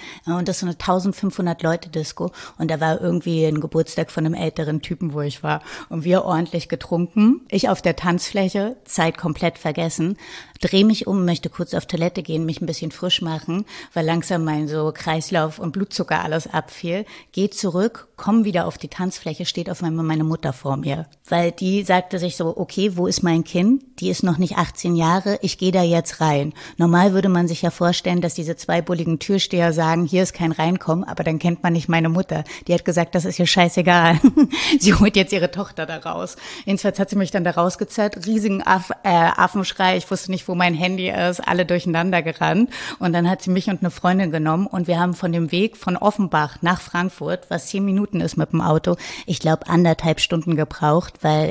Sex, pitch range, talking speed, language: female, 165-185 Hz, 205 wpm, German